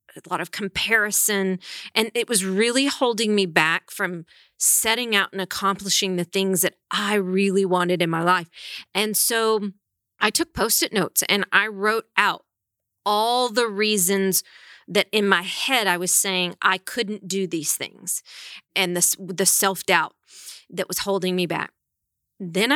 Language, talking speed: English, 155 wpm